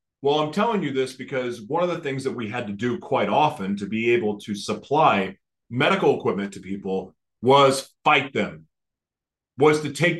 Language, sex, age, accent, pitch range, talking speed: English, male, 40-59, American, 115-150 Hz, 190 wpm